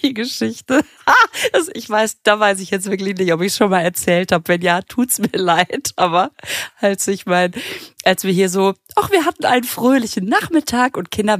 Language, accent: German, German